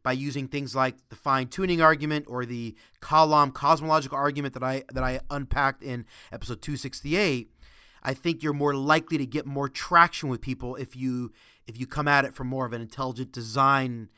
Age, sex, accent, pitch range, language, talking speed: 30-49, male, American, 120-145 Hz, English, 190 wpm